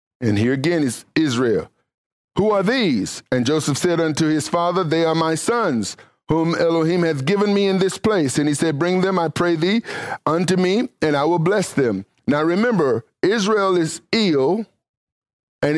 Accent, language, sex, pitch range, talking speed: American, English, male, 155-200 Hz, 180 wpm